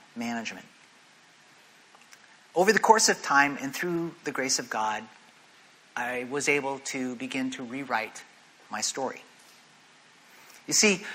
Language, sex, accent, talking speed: English, male, American, 125 wpm